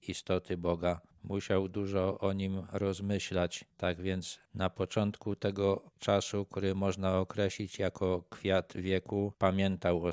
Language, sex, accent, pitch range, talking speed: Polish, male, native, 90-100 Hz, 125 wpm